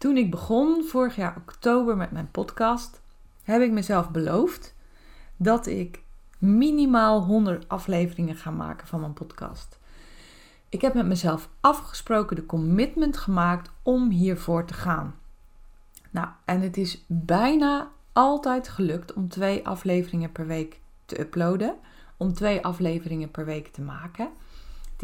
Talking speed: 135 wpm